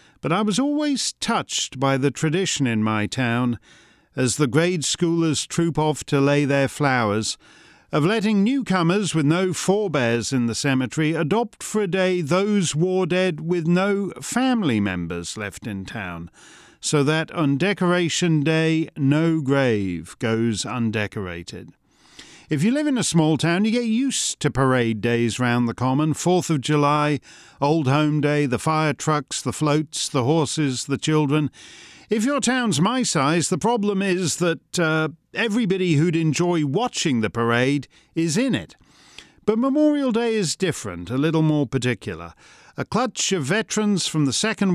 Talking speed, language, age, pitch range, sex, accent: 155 wpm, English, 50-69, 135-185 Hz, male, British